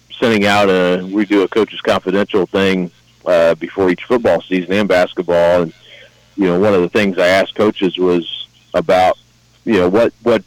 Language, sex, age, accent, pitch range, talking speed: English, male, 40-59, American, 85-95 Hz, 185 wpm